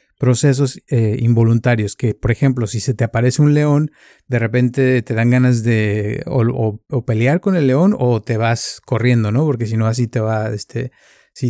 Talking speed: 200 wpm